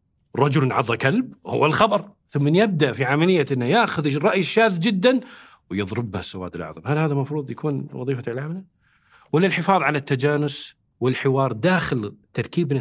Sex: male